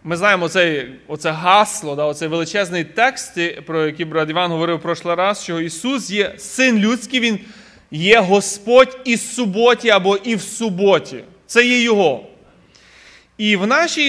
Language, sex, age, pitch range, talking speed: Ukrainian, male, 30-49, 175-235 Hz, 160 wpm